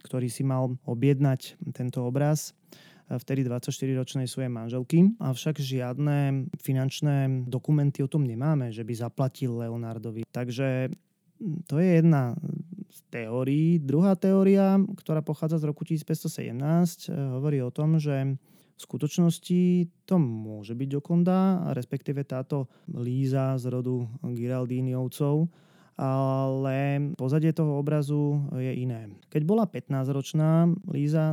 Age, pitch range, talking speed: 20-39, 125-160 Hz, 115 wpm